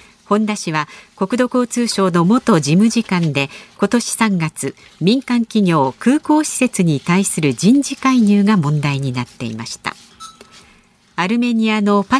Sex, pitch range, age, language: female, 160-240 Hz, 50-69, Japanese